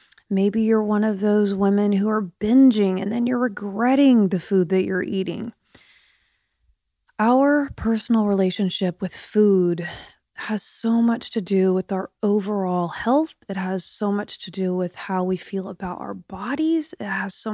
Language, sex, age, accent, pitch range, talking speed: English, female, 30-49, American, 185-215 Hz, 165 wpm